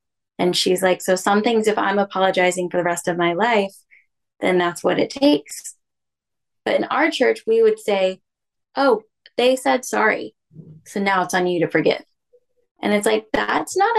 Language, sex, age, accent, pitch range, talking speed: English, female, 10-29, American, 195-270 Hz, 185 wpm